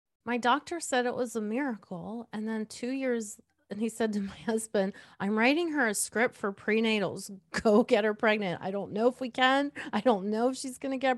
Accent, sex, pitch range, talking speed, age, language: American, female, 210-255 Hz, 225 wpm, 30-49, English